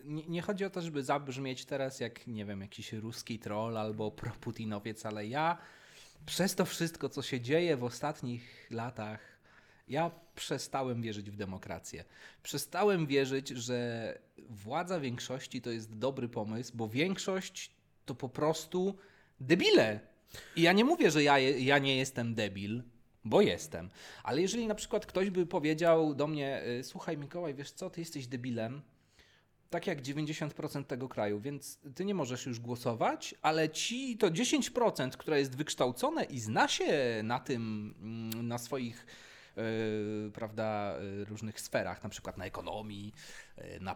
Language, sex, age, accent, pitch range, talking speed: Polish, male, 30-49, native, 110-165 Hz, 145 wpm